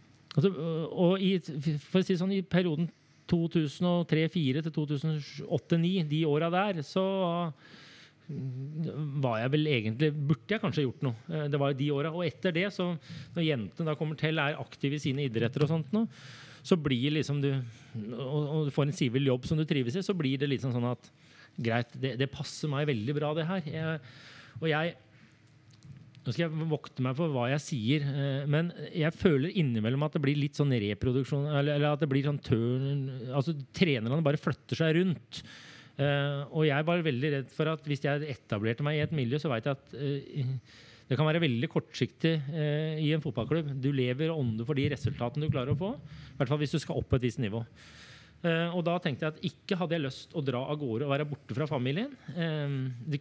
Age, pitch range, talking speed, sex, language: 30-49, 135-160 Hz, 190 wpm, male, English